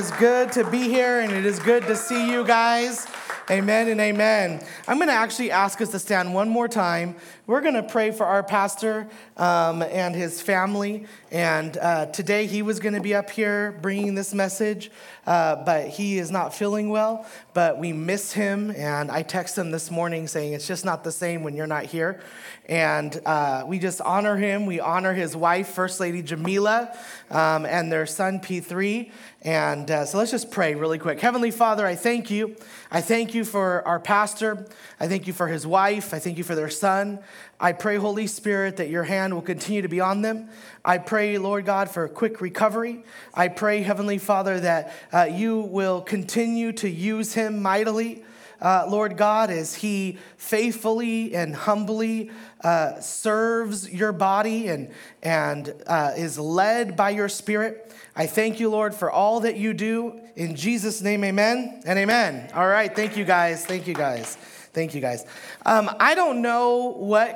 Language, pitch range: English, 175-220 Hz